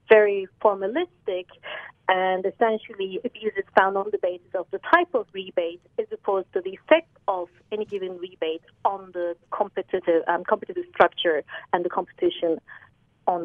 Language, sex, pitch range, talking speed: English, female, 180-235 Hz, 150 wpm